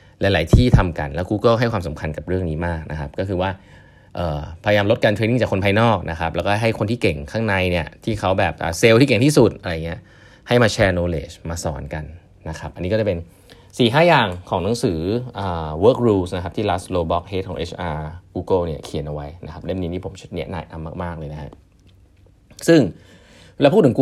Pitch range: 85-110 Hz